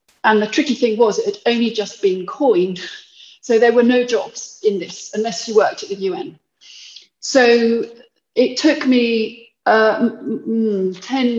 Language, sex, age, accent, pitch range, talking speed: English, female, 30-49, British, 195-250 Hz, 165 wpm